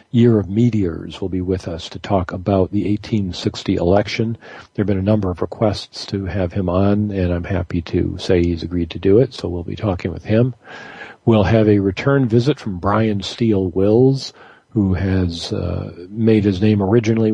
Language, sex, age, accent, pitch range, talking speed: English, male, 50-69, American, 90-115 Hz, 195 wpm